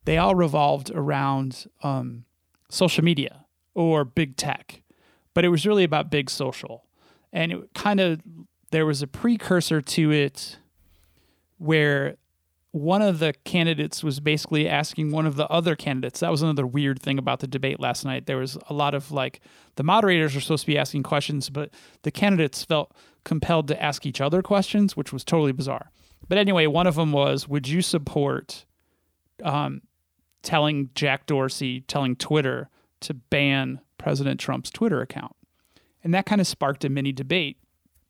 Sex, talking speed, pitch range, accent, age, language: male, 170 wpm, 135-170 Hz, American, 30-49, English